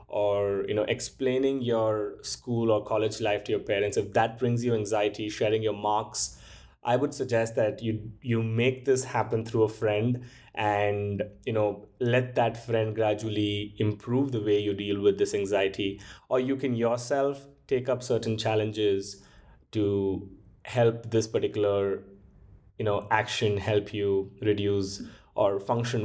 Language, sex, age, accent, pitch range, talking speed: English, male, 20-39, Indian, 105-120 Hz, 155 wpm